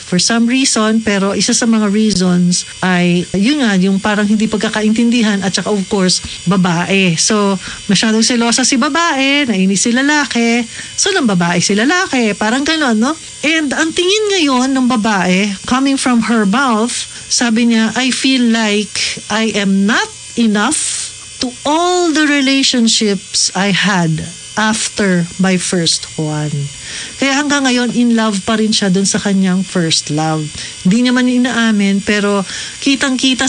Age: 40-59